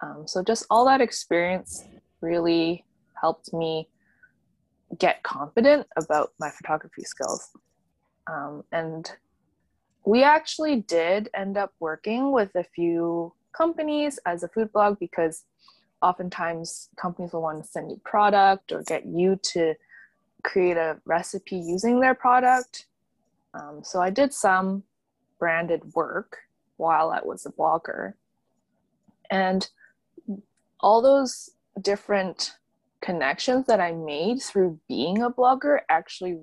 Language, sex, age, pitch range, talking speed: English, female, 20-39, 165-225 Hz, 125 wpm